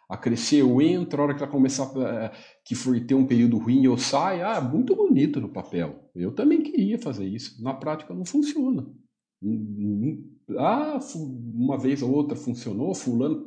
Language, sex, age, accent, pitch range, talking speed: Portuguese, male, 50-69, Brazilian, 100-165 Hz, 170 wpm